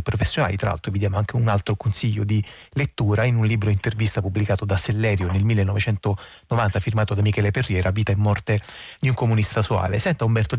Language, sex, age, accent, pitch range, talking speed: Italian, male, 30-49, native, 110-130 Hz, 185 wpm